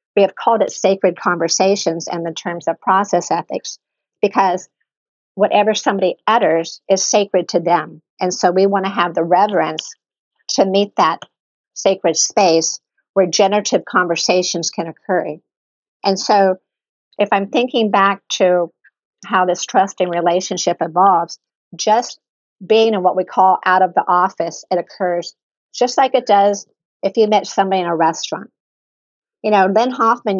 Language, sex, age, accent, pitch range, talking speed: English, female, 50-69, American, 175-200 Hz, 150 wpm